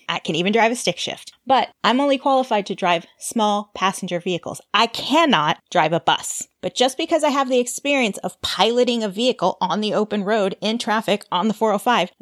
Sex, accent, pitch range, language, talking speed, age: female, American, 180-250 Hz, English, 200 wpm, 30-49